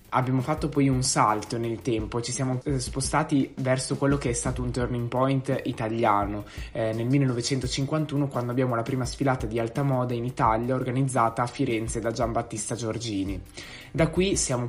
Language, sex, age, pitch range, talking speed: Italian, male, 20-39, 115-140 Hz, 170 wpm